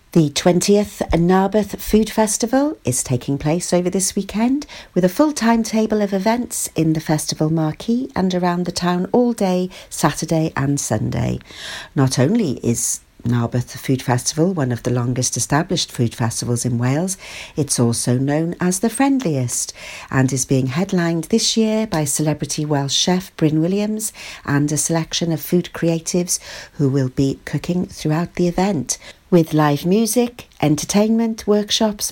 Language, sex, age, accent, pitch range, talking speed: English, female, 50-69, British, 140-195 Hz, 150 wpm